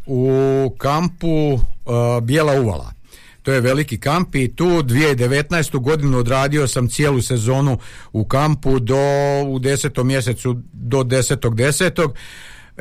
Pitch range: 130-165 Hz